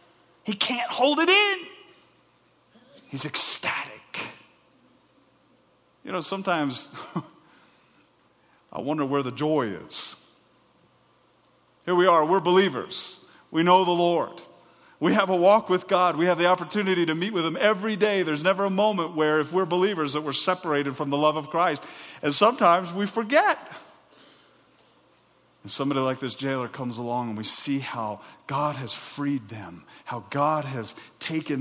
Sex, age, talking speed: male, 50-69, 150 wpm